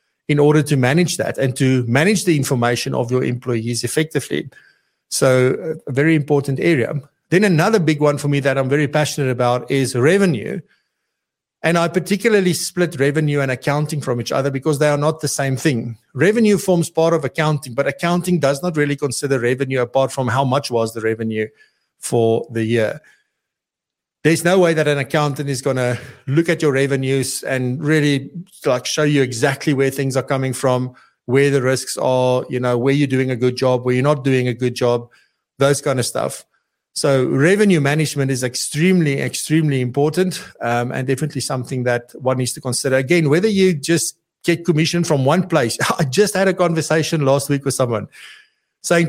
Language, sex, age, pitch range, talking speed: English, male, 50-69, 130-160 Hz, 185 wpm